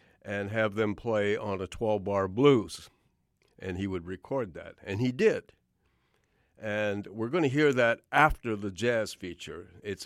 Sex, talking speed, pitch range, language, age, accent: male, 155 wpm, 95-120 Hz, English, 60-79, American